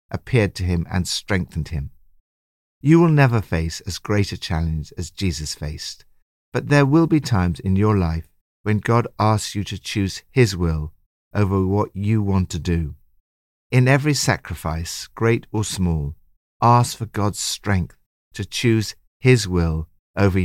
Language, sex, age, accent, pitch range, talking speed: English, male, 60-79, British, 80-120 Hz, 160 wpm